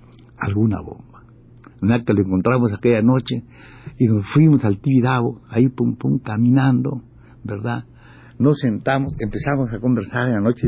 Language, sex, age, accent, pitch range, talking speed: Spanish, male, 60-79, Mexican, 120-160 Hz, 145 wpm